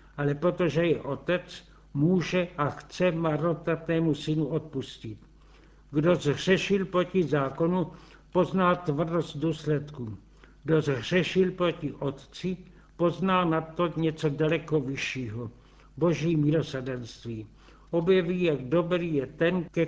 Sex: male